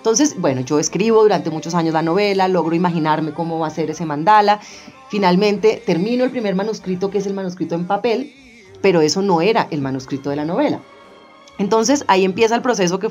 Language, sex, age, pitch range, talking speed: Spanish, female, 30-49, 160-210 Hz, 195 wpm